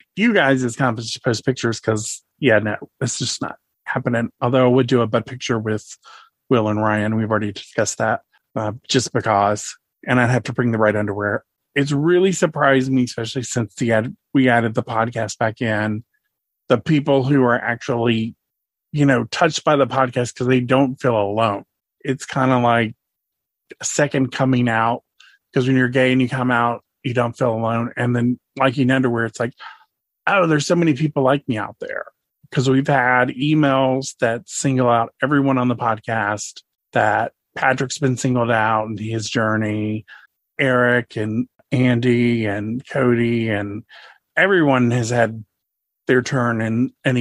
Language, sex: English, male